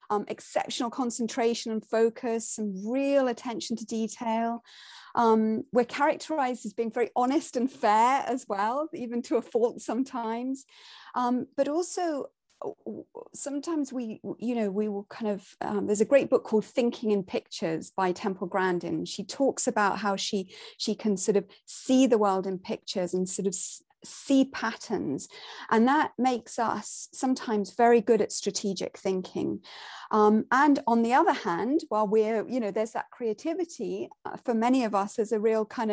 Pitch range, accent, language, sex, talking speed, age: 205-255 Hz, British, English, female, 165 wpm, 30-49